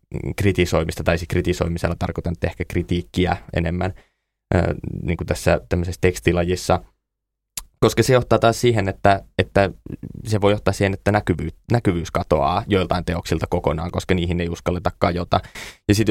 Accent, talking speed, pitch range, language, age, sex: native, 140 wpm, 85-100 Hz, Finnish, 20-39, male